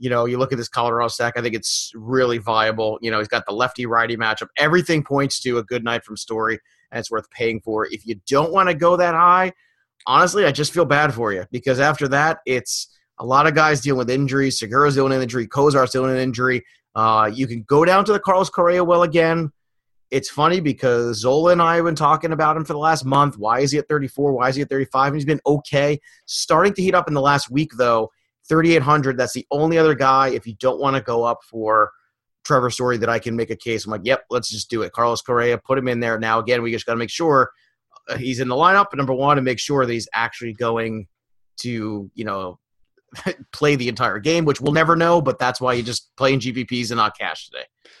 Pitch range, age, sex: 115-150 Hz, 30-49, male